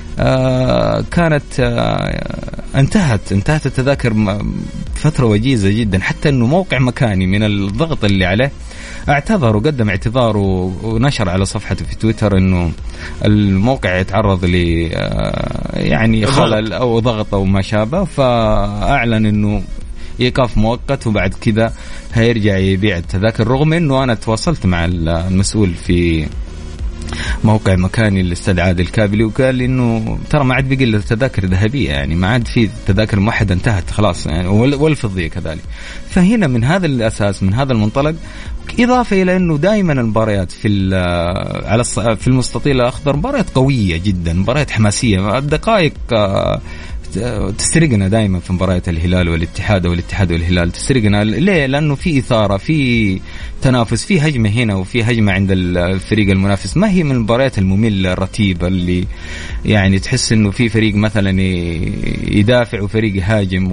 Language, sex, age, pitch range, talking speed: Arabic, male, 30-49, 95-125 Hz, 130 wpm